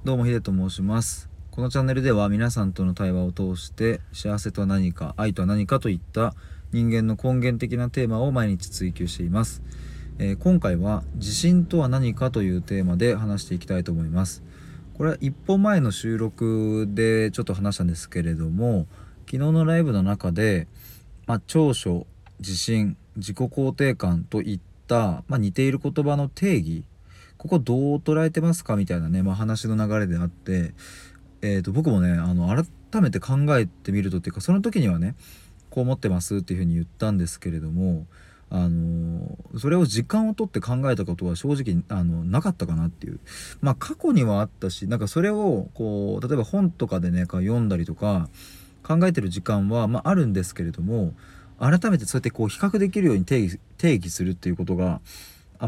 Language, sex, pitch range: Japanese, male, 90-130 Hz